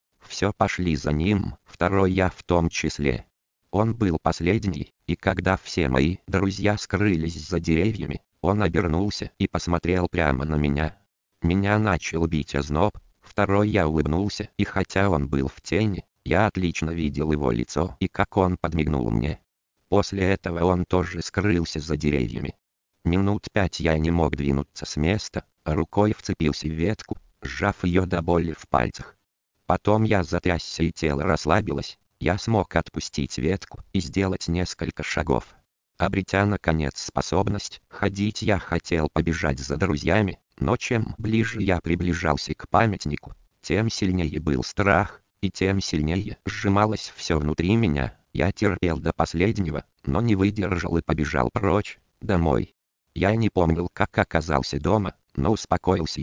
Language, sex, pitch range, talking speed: Russian, male, 80-100 Hz, 145 wpm